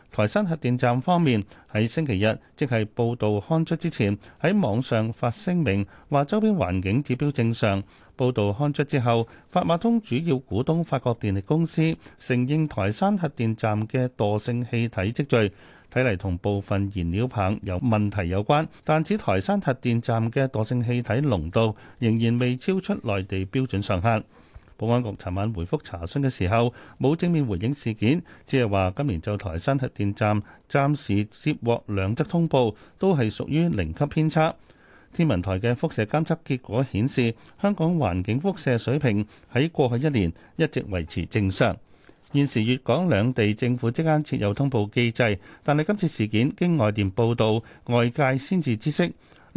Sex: male